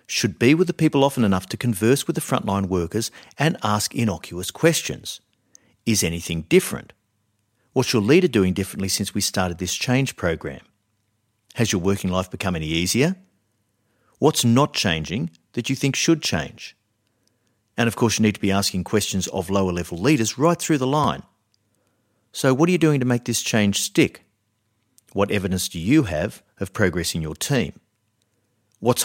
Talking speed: 175 wpm